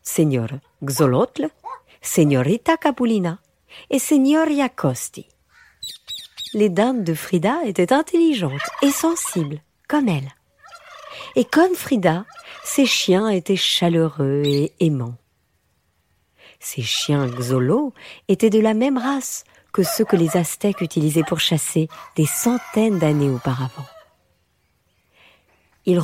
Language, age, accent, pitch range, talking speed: French, 50-69, French, 150-220 Hz, 110 wpm